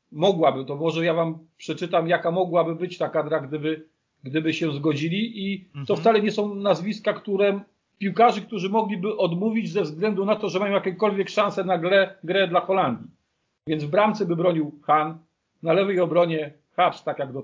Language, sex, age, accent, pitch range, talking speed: Polish, male, 40-59, native, 155-185 Hz, 180 wpm